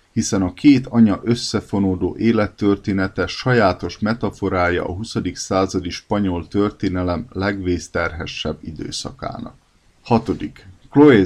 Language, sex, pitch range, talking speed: Hungarian, male, 95-115 Hz, 90 wpm